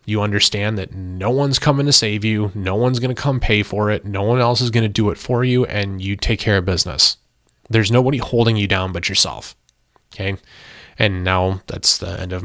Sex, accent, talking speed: male, American, 225 wpm